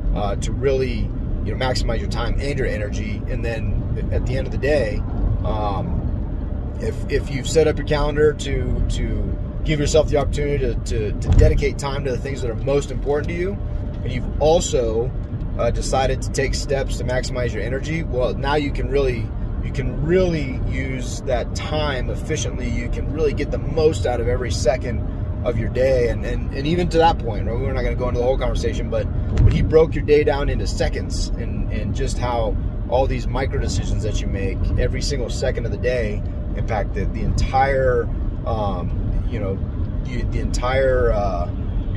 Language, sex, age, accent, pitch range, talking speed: English, male, 30-49, American, 100-125 Hz, 195 wpm